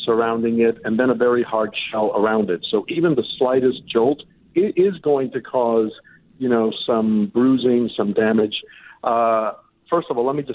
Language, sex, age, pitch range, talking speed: English, male, 50-69, 110-130 Hz, 190 wpm